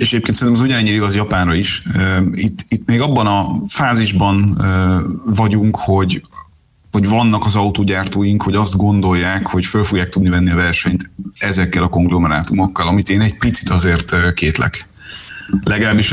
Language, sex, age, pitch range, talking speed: Hungarian, male, 30-49, 90-105 Hz, 150 wpm